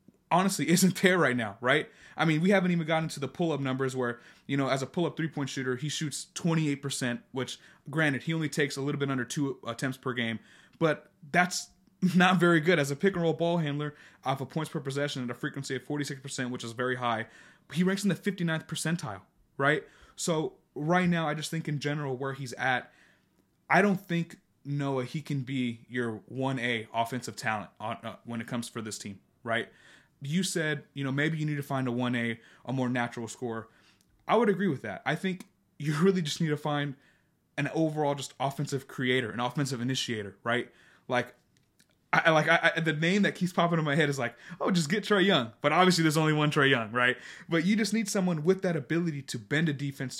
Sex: male